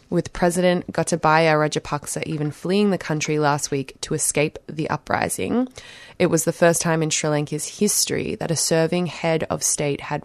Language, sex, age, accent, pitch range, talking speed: English, female, 20-39, Australian, 145-165 Hz, 175 wpm